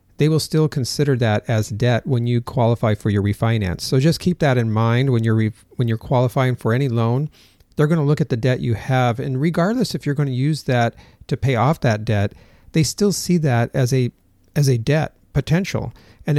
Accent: American